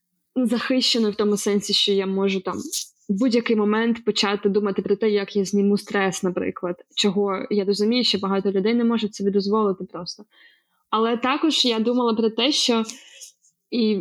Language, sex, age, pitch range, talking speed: Ukrainian, female, 20-39, 205-240 Hz, 165 wpm